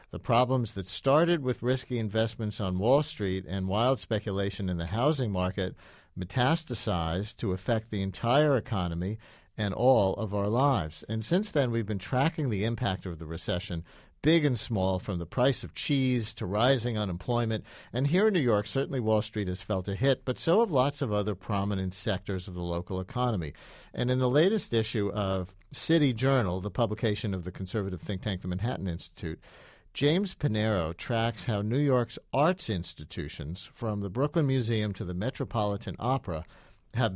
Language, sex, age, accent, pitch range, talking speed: English, male, 50-69, American, 95-130 Hz, 175 wpm